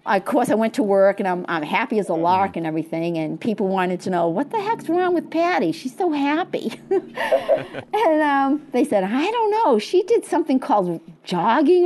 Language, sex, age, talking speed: English, female, 50-69, 205 wpm